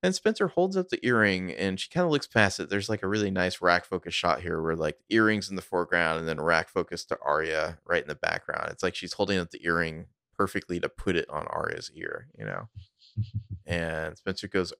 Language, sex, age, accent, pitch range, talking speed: English, male, 20-39, American, 85-110 Hz, 230 wpm